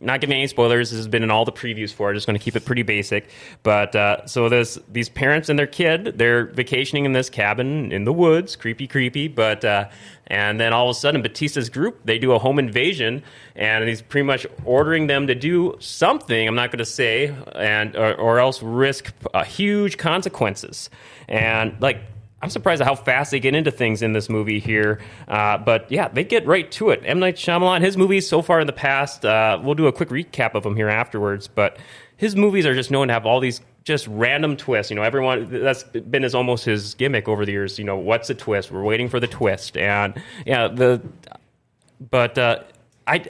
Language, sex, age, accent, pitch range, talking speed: English, male, 30-49, American, 110-145 Hz, 220 wpm